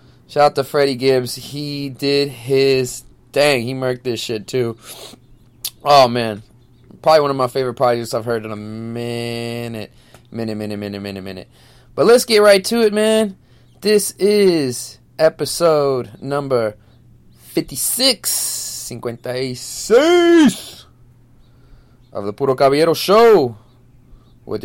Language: English